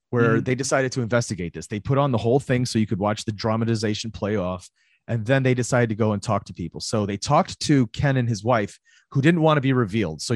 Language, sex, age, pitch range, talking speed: English, male, 30-49, 105-125 Hz, 260 wpm